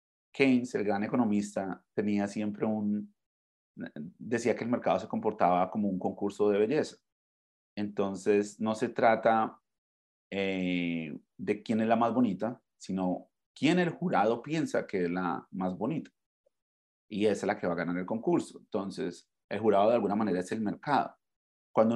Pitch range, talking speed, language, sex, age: 95-115 Hz, 160 wpm, Spanish, male, 30-49